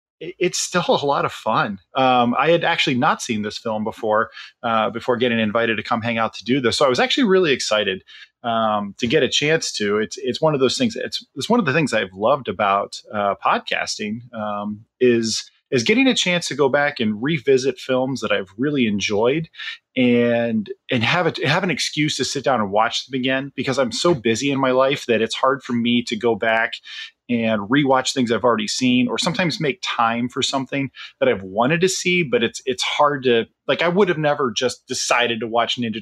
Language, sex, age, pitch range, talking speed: English, male, 30-49, 115-155 Hz, 220 wpm